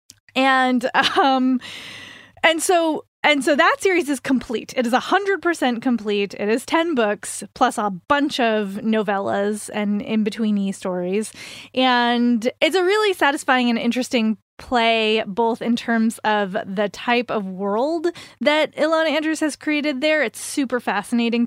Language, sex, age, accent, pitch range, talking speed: English, female, 20-39, American, 220-290 Hz, 150 wpm